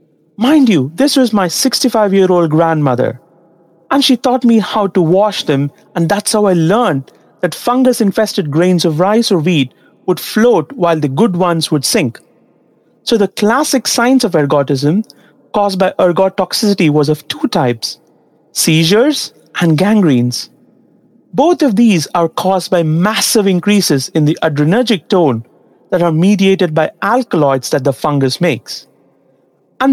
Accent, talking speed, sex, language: Indian, 150 wpm, male, English